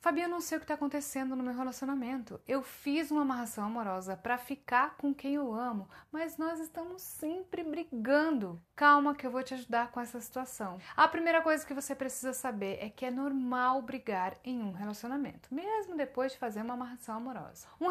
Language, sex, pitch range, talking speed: Portuguese, female, 235-310 Hz, 200 wpm